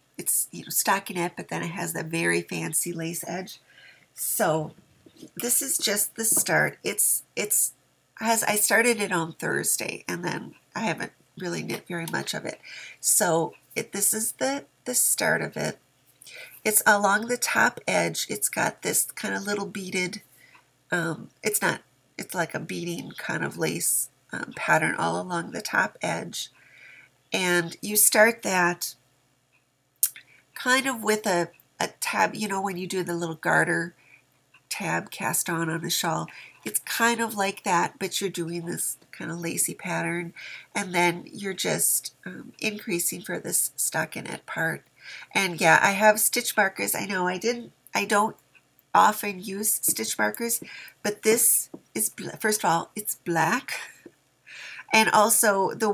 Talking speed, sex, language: 160 wpm, female, English